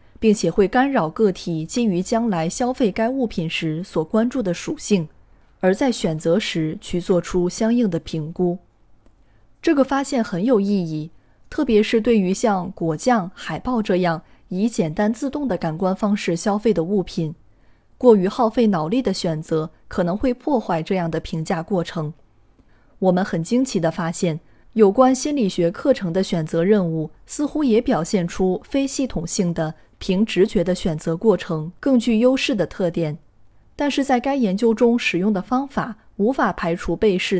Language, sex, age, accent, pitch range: Chinese, female, 20-39, native, 165-230 Hz